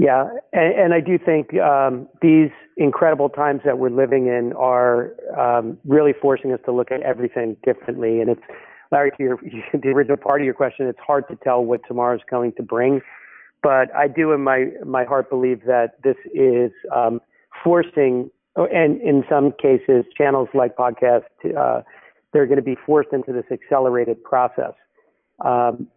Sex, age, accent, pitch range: male, 40-59, American, 120-140 Hz